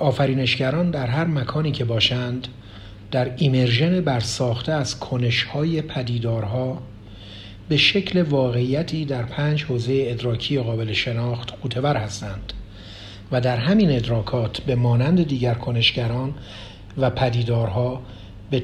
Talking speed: 110 wpm